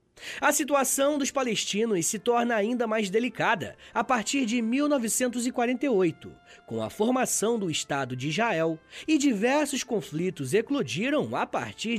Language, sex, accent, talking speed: Portuguese, male, Brazilian, 130 wpm